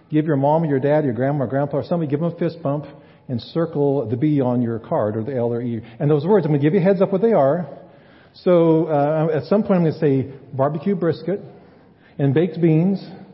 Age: 50-69